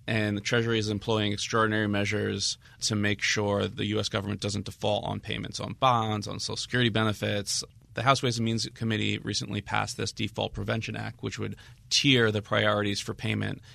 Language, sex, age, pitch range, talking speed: English, male, 20-39, 105-115 Hz, 185 wpm